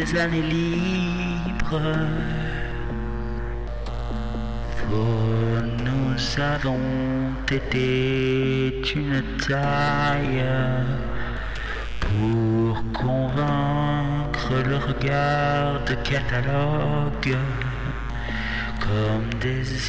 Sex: male